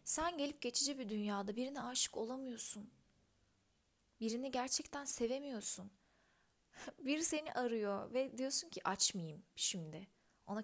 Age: 30-49